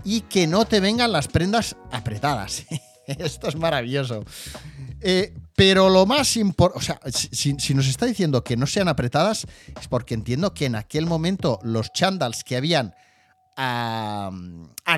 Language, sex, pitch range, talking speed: Spanish, male, 130-185 Hz, 160 wpm